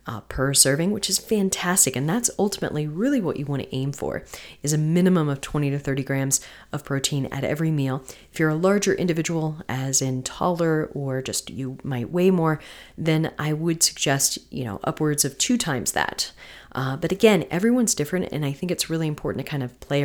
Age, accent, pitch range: 30-49, American, 140-175 Hz